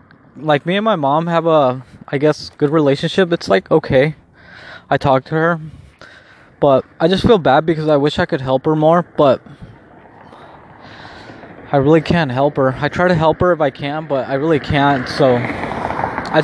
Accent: American